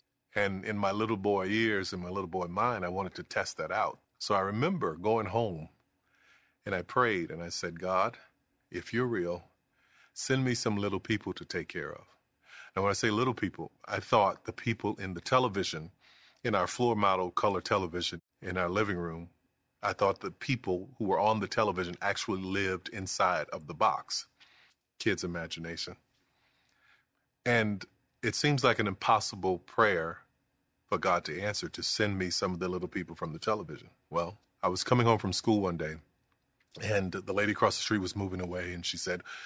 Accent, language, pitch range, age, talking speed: American, English, 90-110 Hz, 30-49, 190 wpm